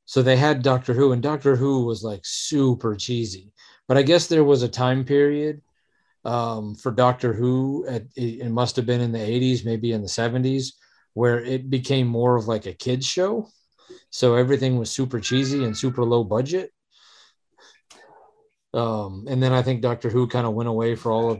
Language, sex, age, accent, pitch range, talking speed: English, male, 40-59, American, 110-130 Hz, 190 wpm